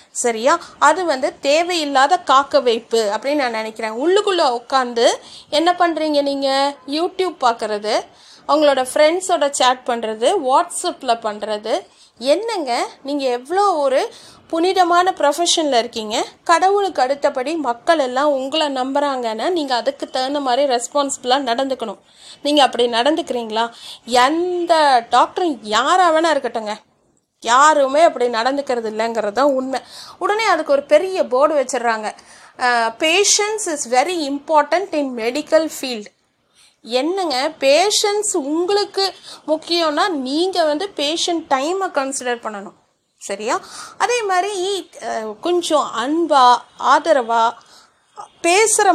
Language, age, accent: Tamil, 30-49, native